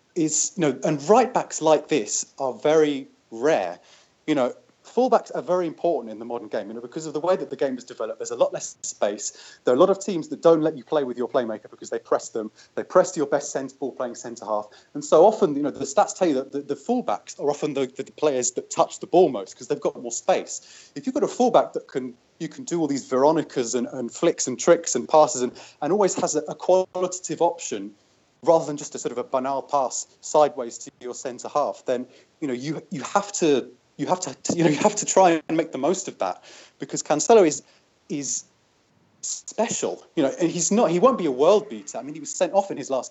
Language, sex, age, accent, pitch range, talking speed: English, male, 30-49, British, 135-185 Hz, 255 wpm